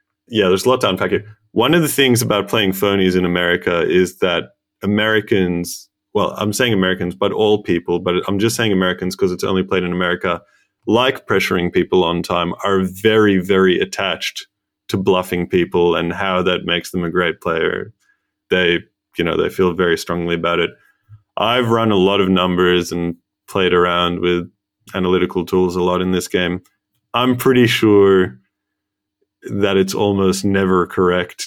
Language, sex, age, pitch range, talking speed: English, male, 20-39, 90-110 Hz, 175 wpm